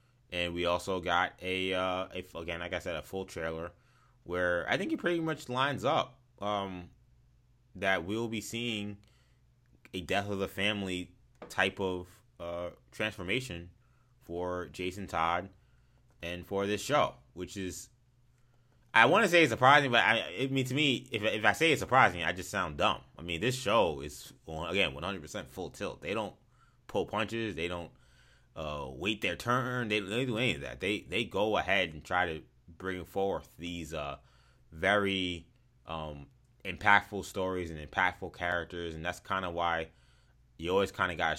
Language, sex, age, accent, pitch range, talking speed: English, male, 20-39, American, 85-120 Hz, 175 wpm